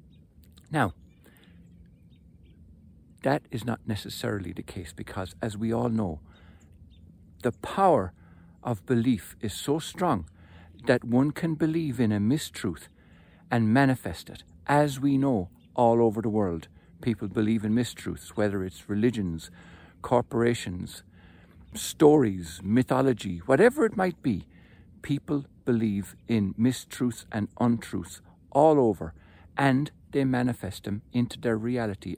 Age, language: 60-79, English